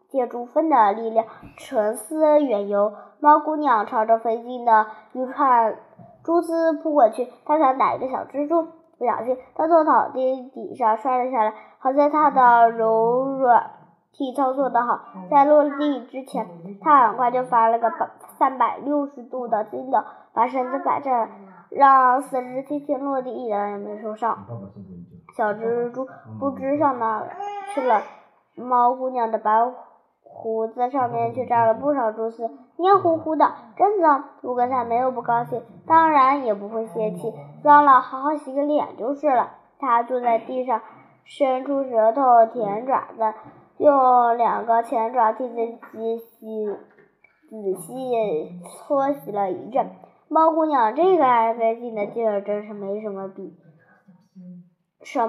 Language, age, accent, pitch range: Chinese, 10-29, native, 220-275 Hz